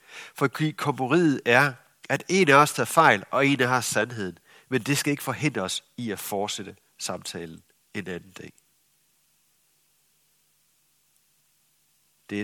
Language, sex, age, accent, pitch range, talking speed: Danish, male, 60-79, native, 105-150 Hz, 140 wpm